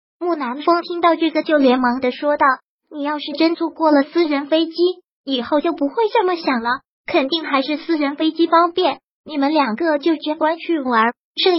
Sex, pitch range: male, 275-335 Hz